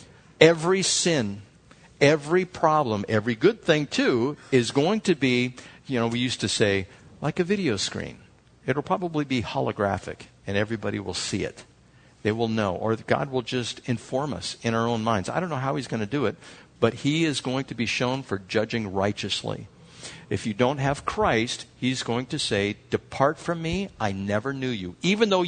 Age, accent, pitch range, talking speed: 60-79, American, 120-190 Hz, 190 wpm